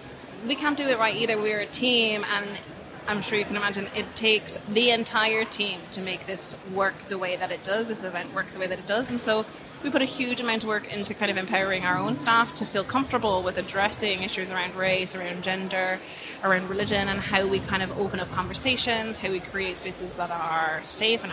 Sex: female